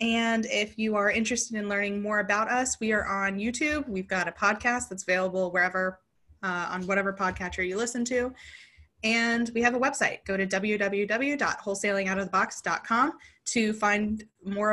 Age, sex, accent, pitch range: 20-39, female, American, 190-240 Hz